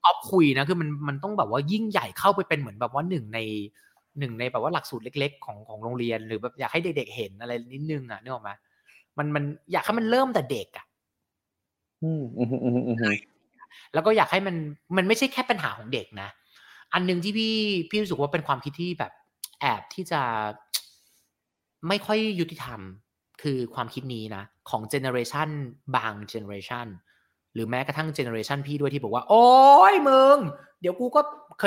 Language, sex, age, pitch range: Thai, male, 20-39, 120-195 Hz